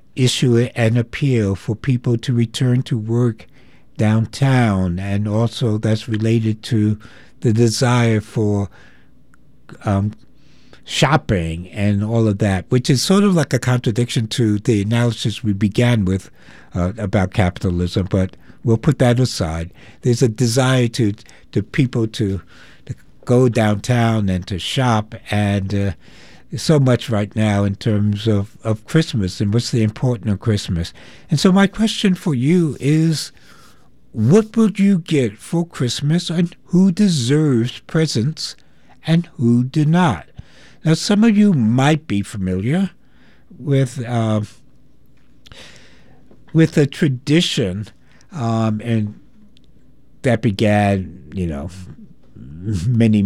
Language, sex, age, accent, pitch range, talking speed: English, male, 60-79, American, 105-135 Hz, 130 wpm